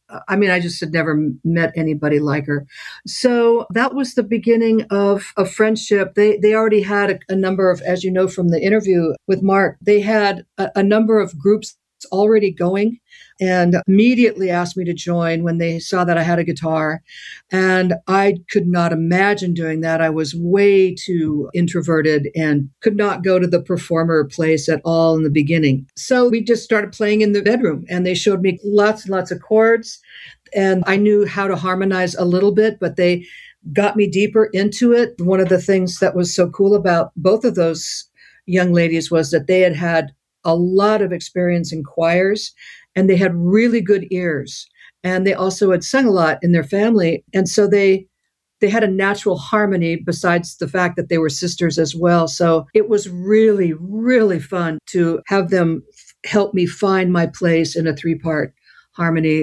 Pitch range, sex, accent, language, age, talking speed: 165-205 Hz, female, American, English, 50-69, 195 wpm